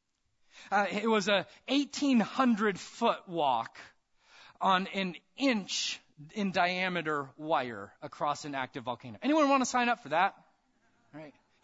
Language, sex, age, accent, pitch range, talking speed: English, male, 30-49, American, 145-220 Hz, 135 wpm